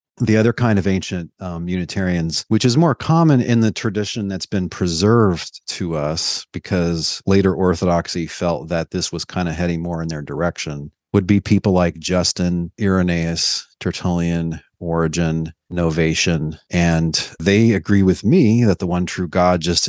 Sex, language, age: male, English, 40-59